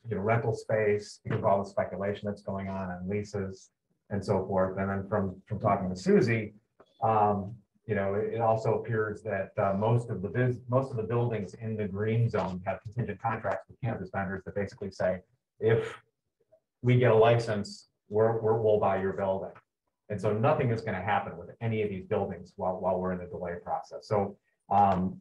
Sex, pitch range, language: male, 100-115 Hz, English